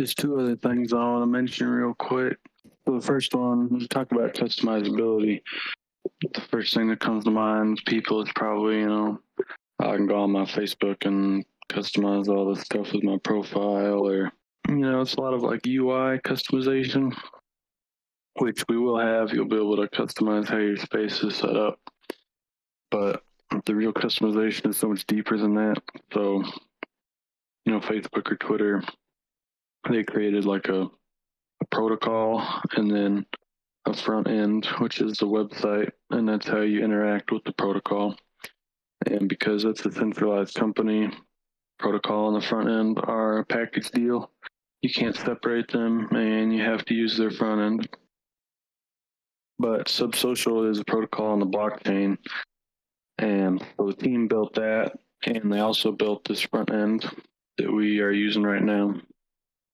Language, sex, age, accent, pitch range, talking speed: English, male, 20-39, American, 105-115 Hz, 160 wpm